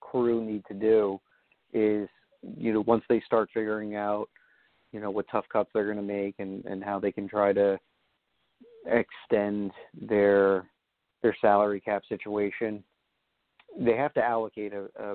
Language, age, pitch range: English, 40-59, 100-110 Hz